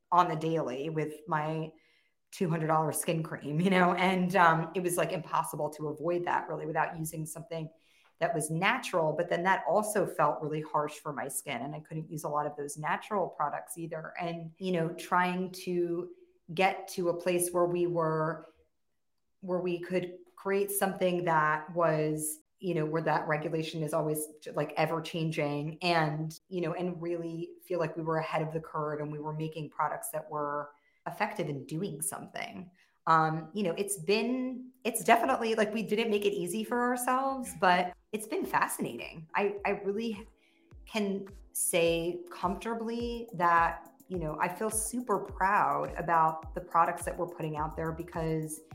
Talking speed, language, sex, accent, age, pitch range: 175 wpm, English, female, American, 30-49, 155-185 Hz